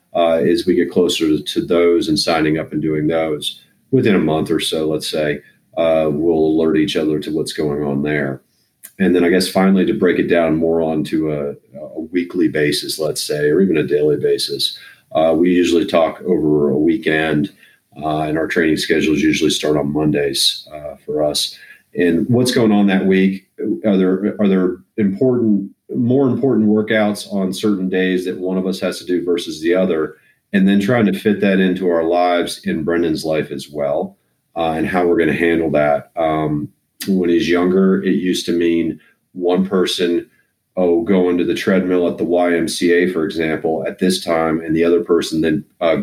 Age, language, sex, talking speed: 40-59, English, male, 195 wpm